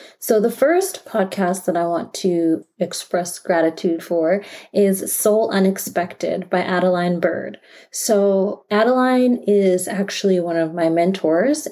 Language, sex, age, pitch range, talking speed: English, female, 30-49, 170-200 Hz, 130 wpm